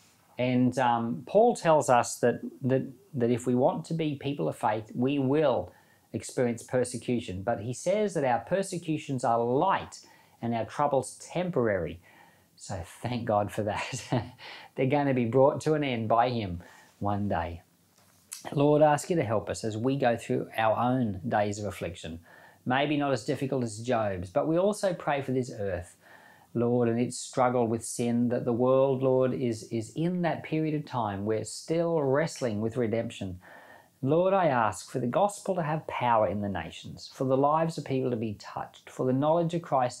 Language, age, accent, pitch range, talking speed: English, 40-59, Australian, 105-140 Hz, 185 wpm